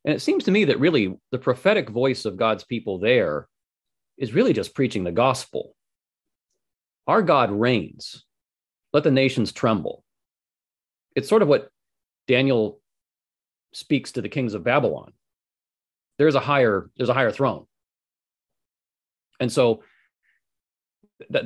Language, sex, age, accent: English, male, 30-49, American